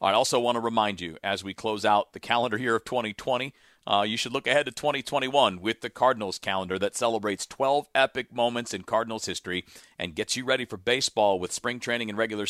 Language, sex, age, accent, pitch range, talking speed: English, male, 40-59, American, 100-125 Hz, 215 wpm